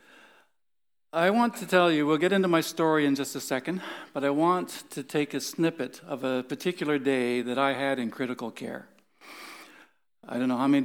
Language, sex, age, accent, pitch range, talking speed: English, male, 60-79, American, 125-170 Hz, 200 wpm